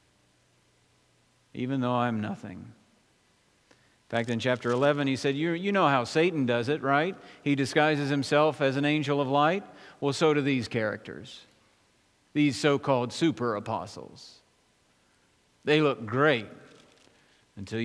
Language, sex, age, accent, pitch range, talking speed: English, male, 50-69, American, 115-160 Hz, 130 wpm